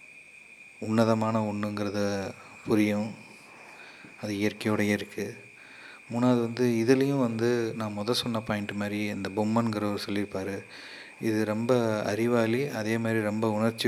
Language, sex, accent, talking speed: Tamil, male, native, 110 wpm